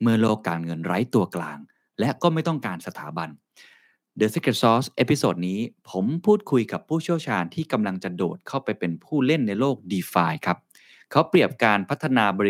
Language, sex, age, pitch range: Thai, male, 20-39, 95-145 Hz